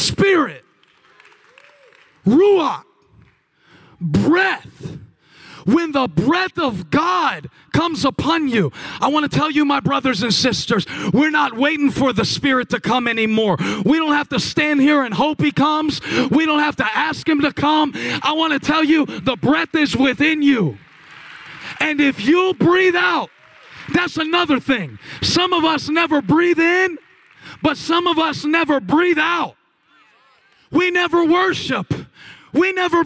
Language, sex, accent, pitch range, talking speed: English, male, American, 250-325 Hz, 150 wpm